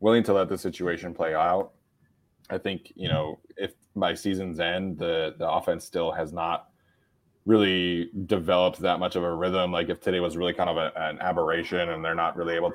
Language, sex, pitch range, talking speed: English, male, 85-100 Hz, 200 wpm